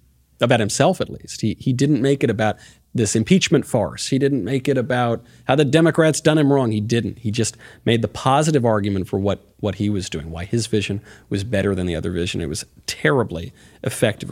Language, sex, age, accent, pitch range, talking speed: English, male, 40-59, American, 95-130 Hz, 215 wpm